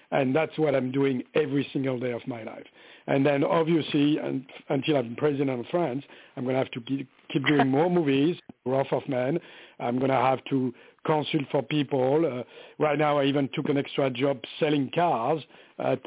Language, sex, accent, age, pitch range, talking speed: English, male, French, 60-79, 140-205 Hz, 190 wpm